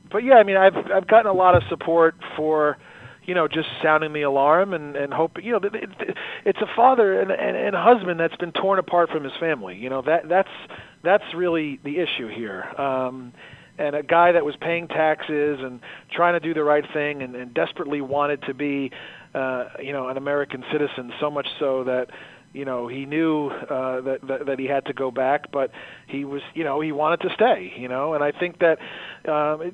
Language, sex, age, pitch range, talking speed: English, male, 40-59, 135-165 Hz, 220 wpm